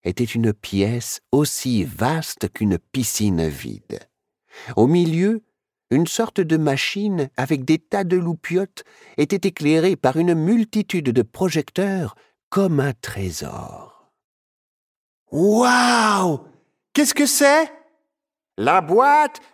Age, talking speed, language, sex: 50-69, 115 wpm, French, male